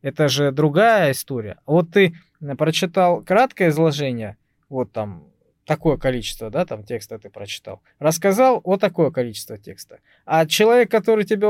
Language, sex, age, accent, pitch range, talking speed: Russian, male, 20-39, native, 130-180 Hz, 140 wpm